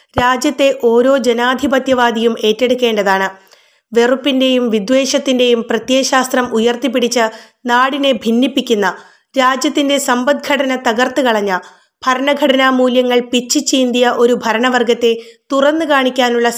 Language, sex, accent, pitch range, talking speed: Malayalam, female, native, 230-270 Hz, 70 wpm